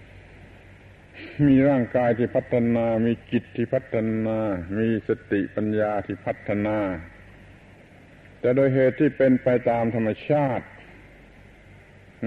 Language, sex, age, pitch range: Thai, male, 60-79, 95-125 Hz